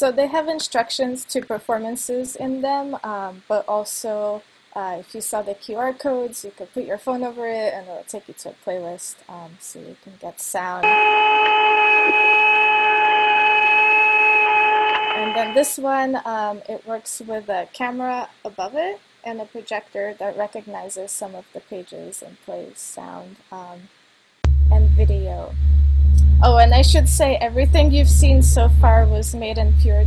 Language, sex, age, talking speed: English, female, 20-39, 160 wpm